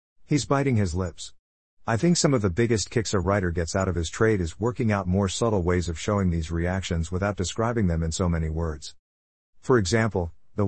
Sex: male